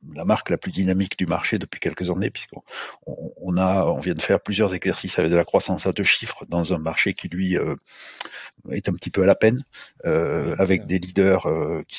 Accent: French